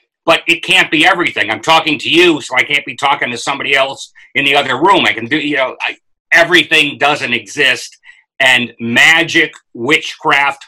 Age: 50-69